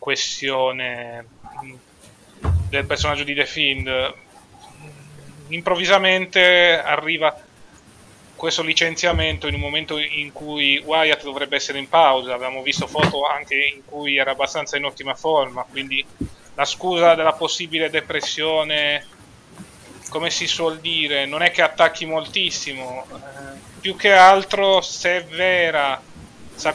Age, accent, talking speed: 30-49, native, 120 wpm